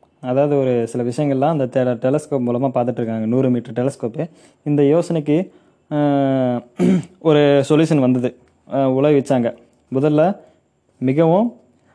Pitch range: 125-150 Hz